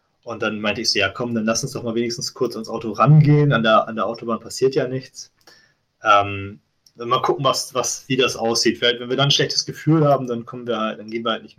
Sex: male